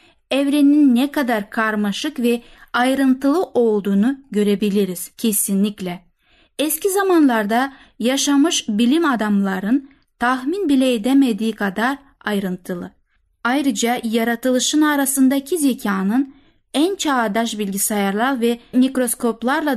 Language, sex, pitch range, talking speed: Turkish, female, 210-270 Hz, 85 wpm